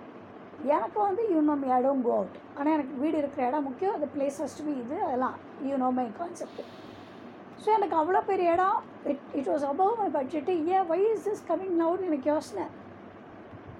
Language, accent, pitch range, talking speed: Tamil, native, 285-380 Hz, 190 wpm